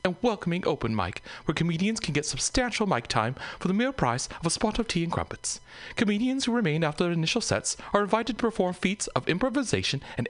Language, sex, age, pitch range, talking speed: English, male, 40-59, 130-215 Hz, 215 wpm